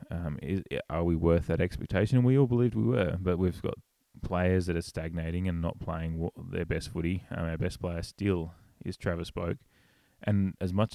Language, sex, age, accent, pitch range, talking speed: English, male, 20-39, Australian, 85-95 Hz, 195 wpm